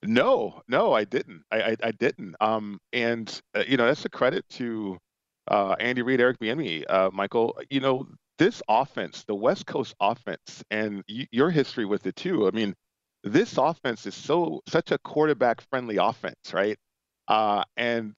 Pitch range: 105-130 Hz